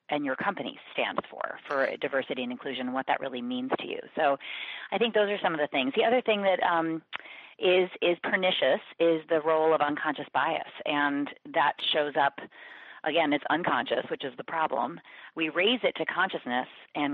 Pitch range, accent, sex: 135-160 Hz, American, female